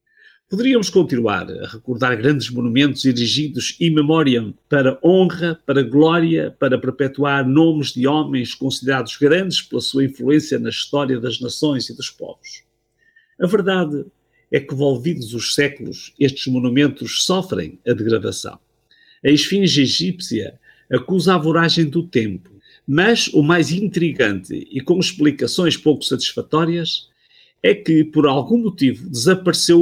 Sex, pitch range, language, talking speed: male, 135-170 Hz, Portuguese, 130 wpm